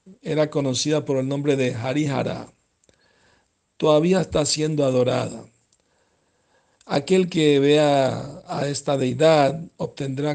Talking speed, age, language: 105 wpm, 60-79, Spanish